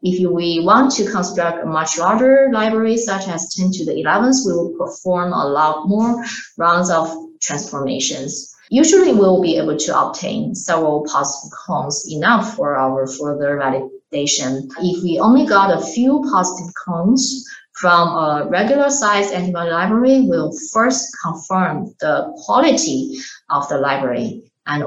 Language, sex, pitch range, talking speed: English, female, 165-235 Hz, 145 wpm